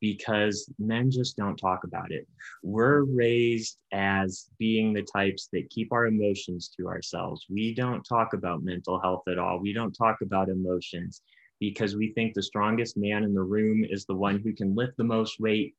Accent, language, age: American, English, 30-49